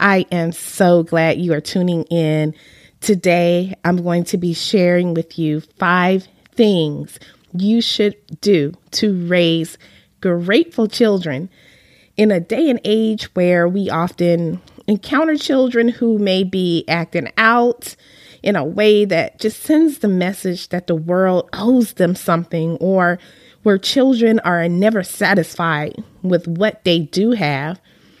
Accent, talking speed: American, 140 wpm